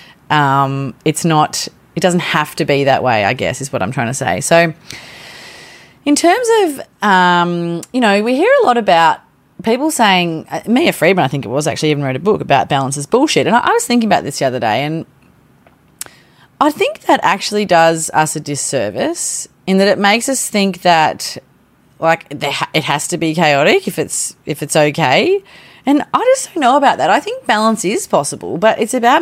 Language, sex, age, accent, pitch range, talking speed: English, female, 30-49, Australian, 150-215 Hz, 200 wpm